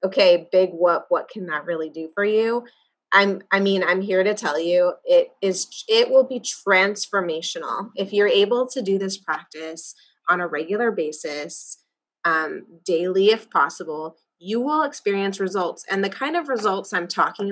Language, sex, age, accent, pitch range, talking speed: English, female, 20-39, American, 185-255 Hz, 170 wpm